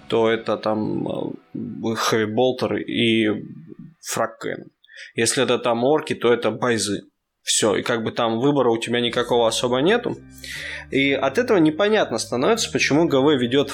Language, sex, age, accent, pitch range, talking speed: Russian, male, 20-39, native, 110-125 Hz, 140 wpm